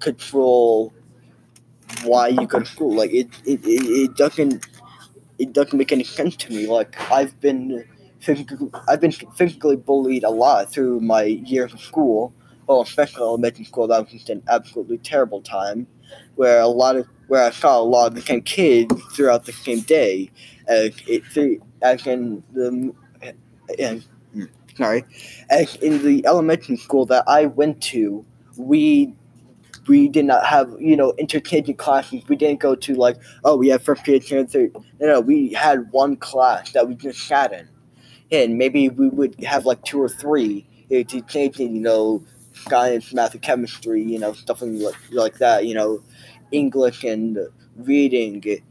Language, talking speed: English, 170 wpm